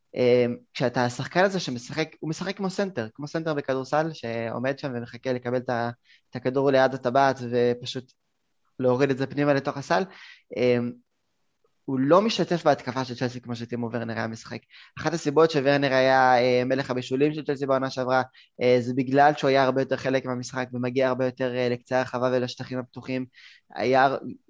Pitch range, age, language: 125-145 Hz, 20-39, Hebrew